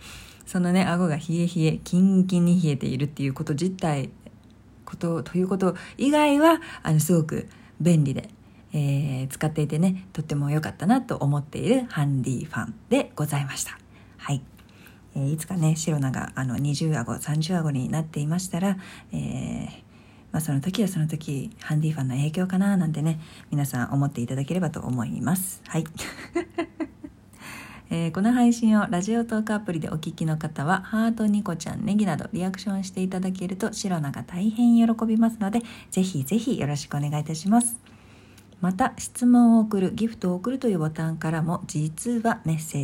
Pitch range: 145-205 Hz